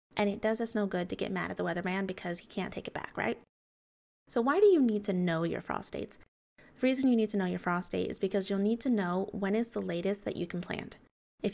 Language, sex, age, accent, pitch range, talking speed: English, female, 20-39, American, 185-220 Hz, 275 wpm